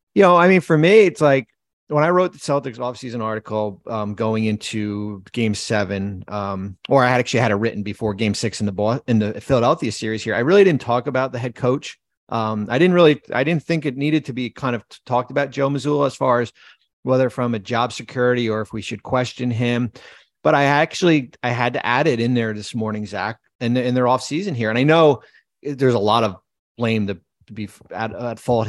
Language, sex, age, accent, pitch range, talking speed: English, male, 30-49, American, 110-130 Hz, 240 wpm